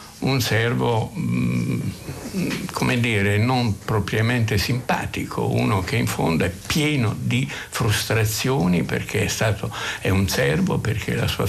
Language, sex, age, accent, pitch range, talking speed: Italian, male, 60-79, native, 100-125 Hz, 125 wpm